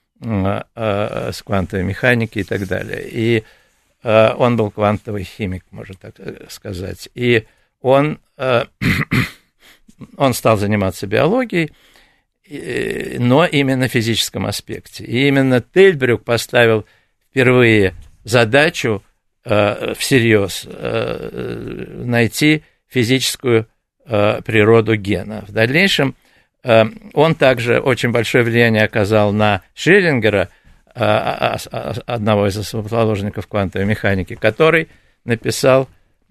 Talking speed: 85 wpm